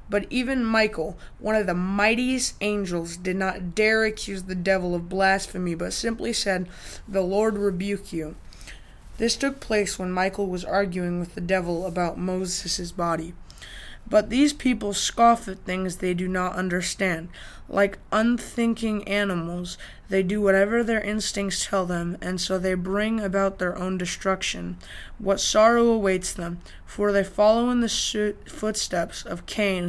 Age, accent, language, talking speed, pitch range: 20-39, American, English, 155 wpm, 180-210 Hz